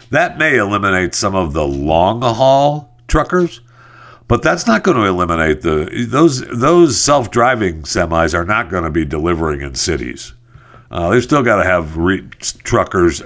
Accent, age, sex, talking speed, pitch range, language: American, 60-79, male, 170 wpm, 80-115 Hz, English